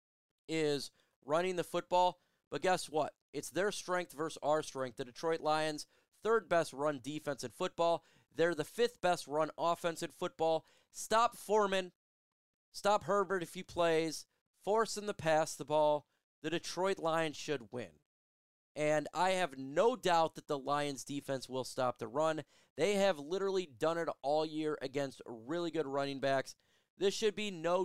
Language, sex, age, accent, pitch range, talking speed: English, male, 30-49, American, 140-175 Hz, 165 wpm